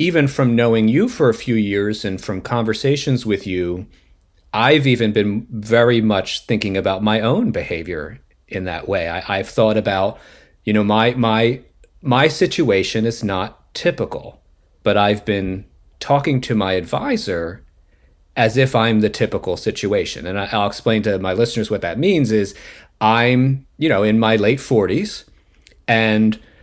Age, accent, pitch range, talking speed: 40-59, American, 95-125 Hz, 155 wpm